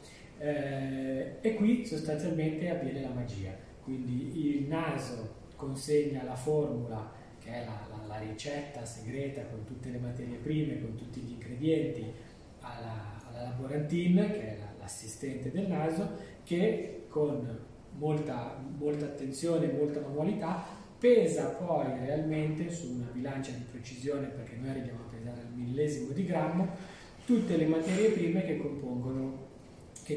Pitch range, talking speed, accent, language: 120-150 Hz, 135 wpm, native, Italian